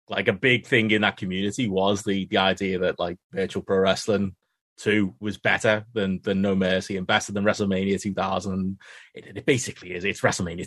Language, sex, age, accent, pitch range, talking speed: English, male, 20-39, British, 95-115 Hz, 190 wpm